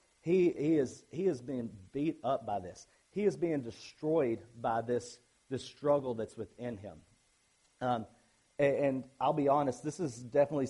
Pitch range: 120-145 Hz